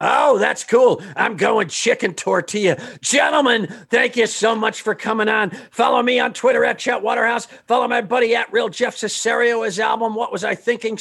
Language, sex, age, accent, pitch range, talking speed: English, male, 50-69, American, 210-260 Hz, 190 wpm